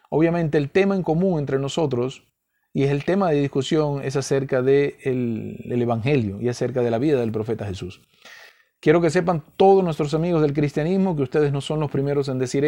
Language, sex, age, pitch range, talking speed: Spanish, male, 50-69, 125-165 Hz, 205 wpm